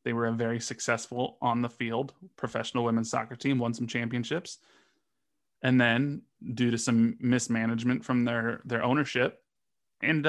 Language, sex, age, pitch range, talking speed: English, male, 20-39, 115-130 Hz, 150 wpm